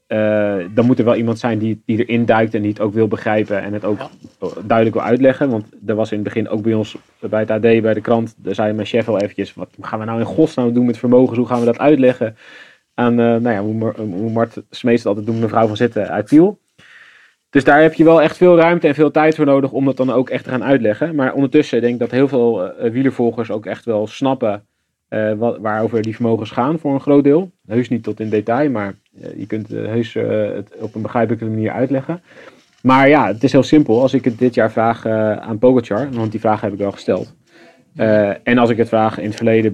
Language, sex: Dutch, male